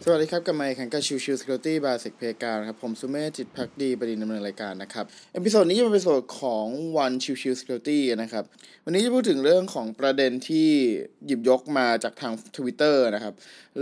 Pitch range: 120-170 Hz